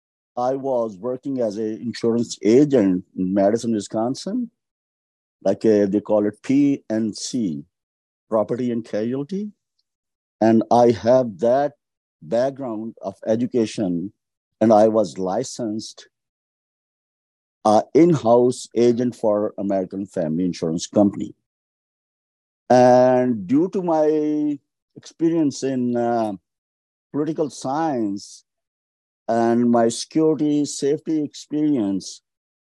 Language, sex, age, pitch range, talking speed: English, male, 50-69, 105-140 Hz, 100 wpm